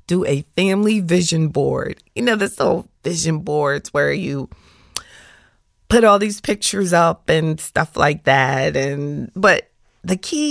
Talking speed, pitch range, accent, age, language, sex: 150 wpm, 145-200 Hz, American, 30-49, English, female